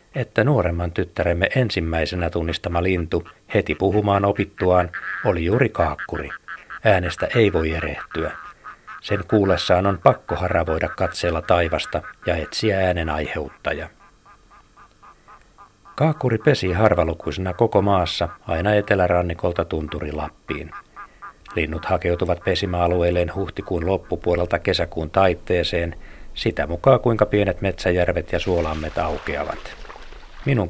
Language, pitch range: Finnish, 85-100 Hz